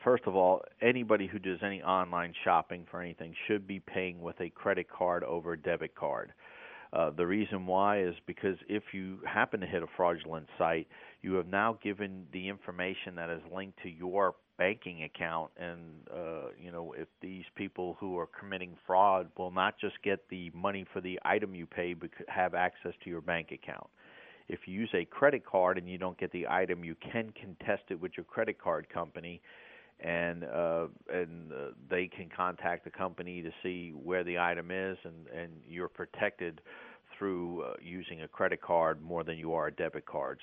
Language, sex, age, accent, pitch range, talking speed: English, male, 40-59, American, 85-95 Hz, 195 wpm